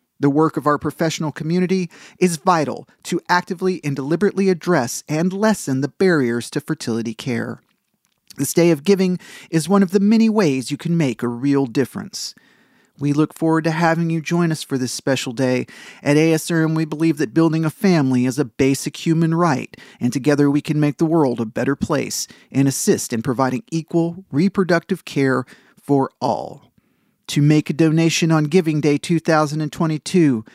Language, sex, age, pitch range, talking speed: English, male, 40-59, 150-190 Hz, 175 wpm